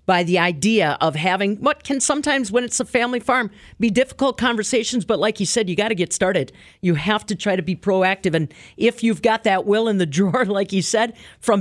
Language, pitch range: English, 170-225 Hz